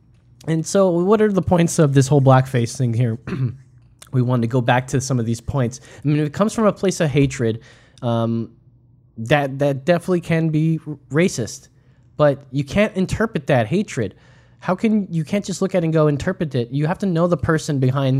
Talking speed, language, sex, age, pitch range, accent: 215 wpm, English, male, 20-39, 125-165 Hz, American